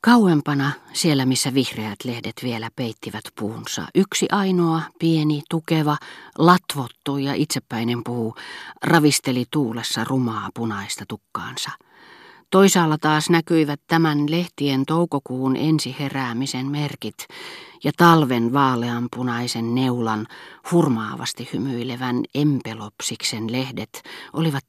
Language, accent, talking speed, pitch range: Finnish, native, 90 wpm, 120-155 Hz